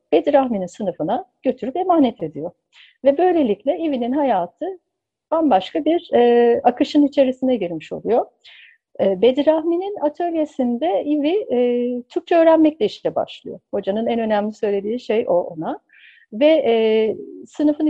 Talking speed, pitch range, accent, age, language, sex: 115 wpm, 200-280 Hz, native, 60-79, Turkish, female